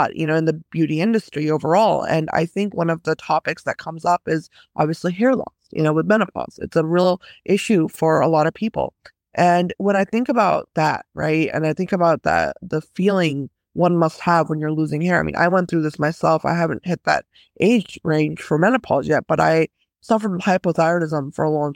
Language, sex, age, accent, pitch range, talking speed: English, female, 20-39, American, 160-200 Hz, 215 wpm